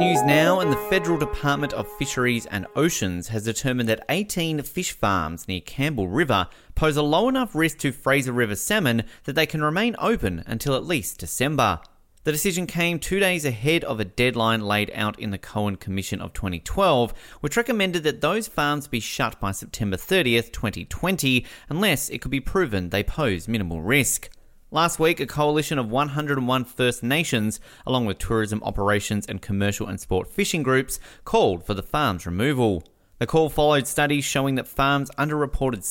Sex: male